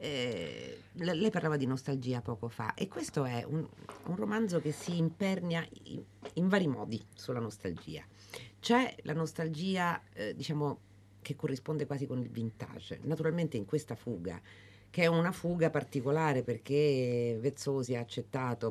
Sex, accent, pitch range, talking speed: female, native, 110-145 Hz, 150 wpm